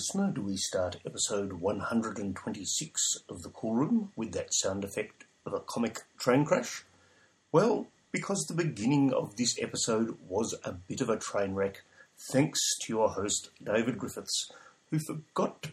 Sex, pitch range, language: male, 105-160 Hz, English